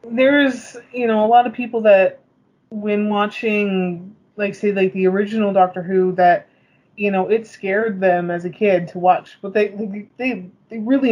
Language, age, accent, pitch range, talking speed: English, 20-39, American, 185-220 Hz, 180 wpm